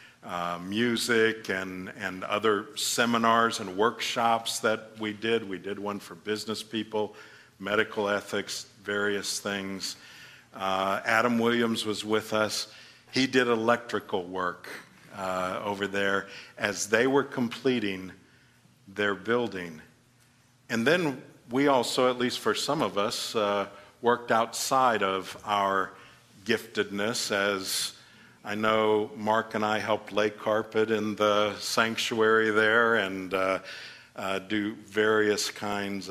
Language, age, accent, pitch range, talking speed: English, 50-69, American, 100-120 Hz, 125 wpm